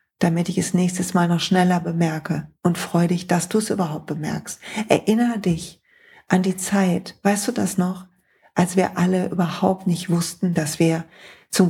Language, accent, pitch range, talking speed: German, German, 175-215 Hz, 175 wpm